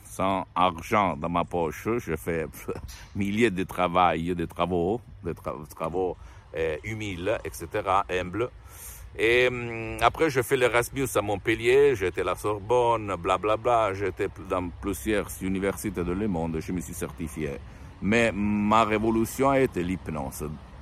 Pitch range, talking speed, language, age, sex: 85-105 Hz, 140 wpm, Italian, 60-79, male